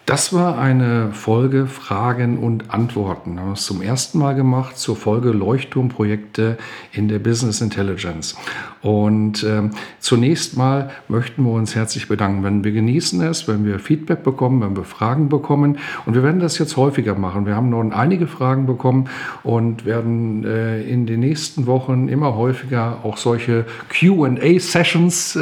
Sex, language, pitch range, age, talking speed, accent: male, German, 110-145 Hz, 50-69, 160 wpm, German